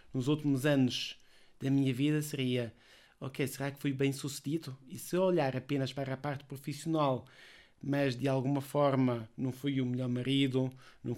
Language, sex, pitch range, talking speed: Portuguese, male, 130-145 Hz, 165 wpm